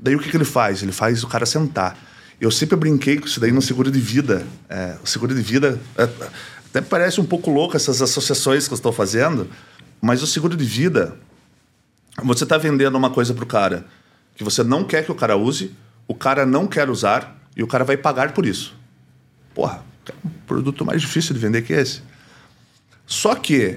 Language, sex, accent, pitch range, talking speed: Portuguese, male, Brazilian, 110-145 Hz, 205 wpm